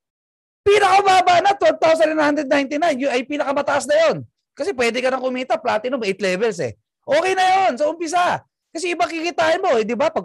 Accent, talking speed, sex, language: native, 185 wpm, male, Filipino